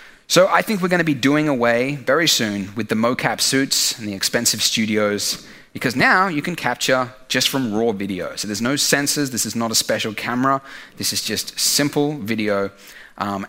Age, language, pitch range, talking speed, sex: 30-49, English, 110-155 Hz, 195 wpm, male